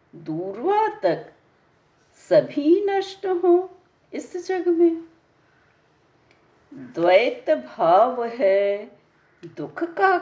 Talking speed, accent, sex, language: 75 wpm, native, female, Hindi